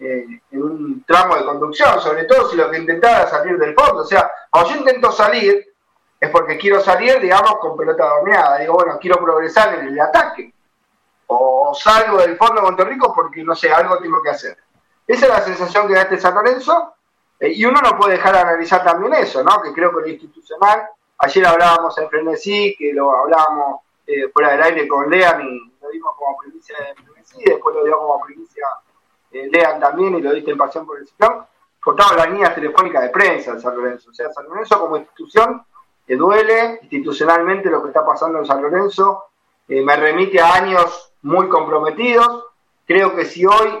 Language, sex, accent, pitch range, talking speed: Spanish, male, Argentinian, 155-215 Hz, 200 wpm